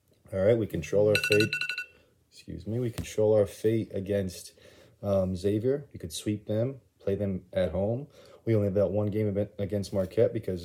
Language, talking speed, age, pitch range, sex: English, 180 wpm, 30-49, 95-105 Hz, male